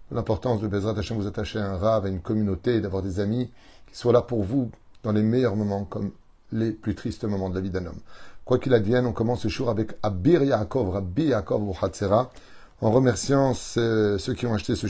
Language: French